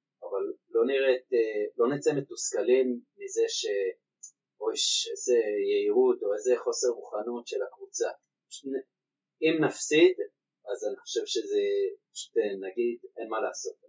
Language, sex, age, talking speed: Hebrew, male, 30-49, 110 wpm